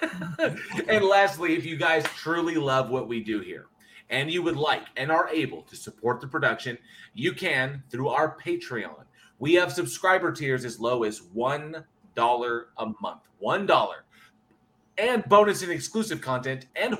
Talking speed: 160 wpm